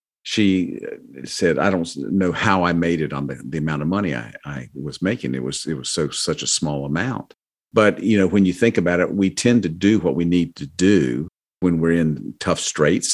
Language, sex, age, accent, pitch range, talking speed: English, male, 50-69, American, 80-95 Hz, 230 wpm